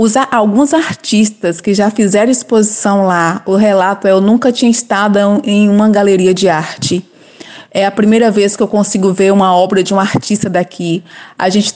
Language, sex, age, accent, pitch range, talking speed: Portuguese, female, 20-39, Brazilian, 200-240 Hz, 180 wpm